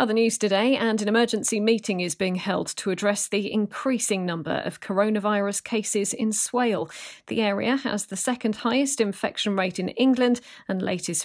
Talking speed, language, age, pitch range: 170 wpm, English, 40-59, 185-220 Hz